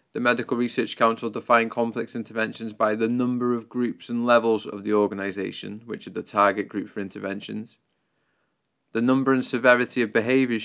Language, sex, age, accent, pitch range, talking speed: English, male, 20-39, British, 105-120 Hz, 170 wpm